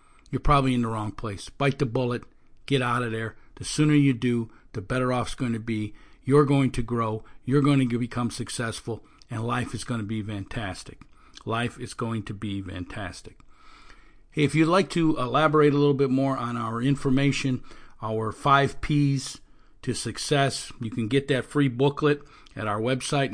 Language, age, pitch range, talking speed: English, 50-69, 120-145 Hz, 185 wpm